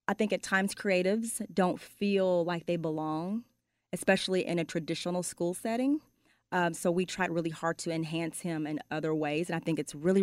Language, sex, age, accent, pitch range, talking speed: English, female, 30-49, American, 165-190 Hz, 195 wpm